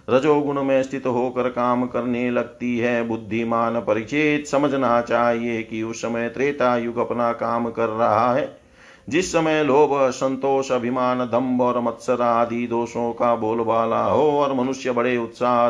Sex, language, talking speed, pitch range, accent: male, Hindi, 150 wpm, 115-135 Hz, native